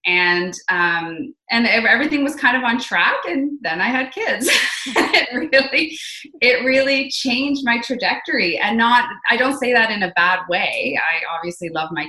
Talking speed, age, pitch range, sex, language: 175 wpm, 20-39, 165-235 Hz, female, English